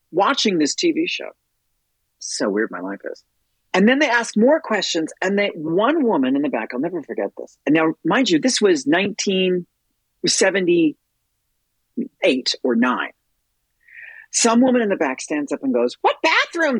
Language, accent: English, American